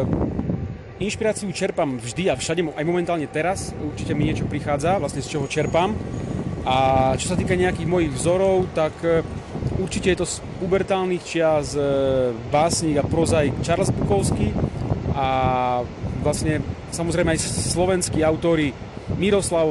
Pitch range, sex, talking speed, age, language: 130-165 Hz, male, 130 wpm, 30-49, Slovak